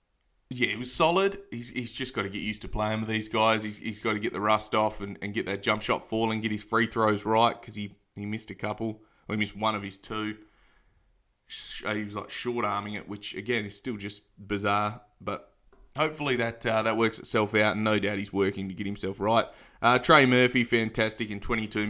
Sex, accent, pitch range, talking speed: male, Australian, 100-120 Hz, 225 wpm